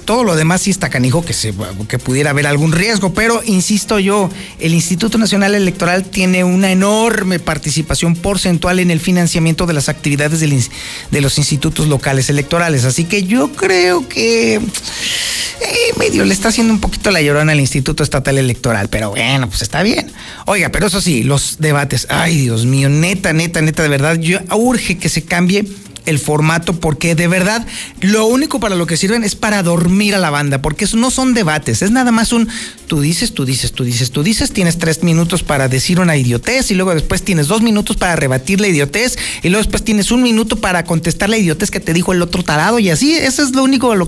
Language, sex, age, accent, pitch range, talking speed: Spanish, male, 40-59, Mexican, 150-210 Hz, 210 wpm